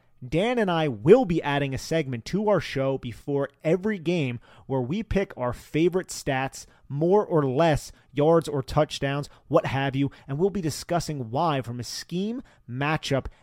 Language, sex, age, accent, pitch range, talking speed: English, male, 30-49, American, 120-160 Hz, 170 wpm